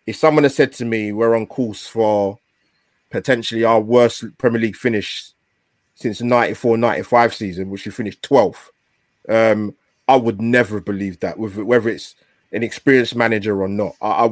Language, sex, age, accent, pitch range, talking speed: English, male, 20-39, British, 105-130 Hz, 170 wpm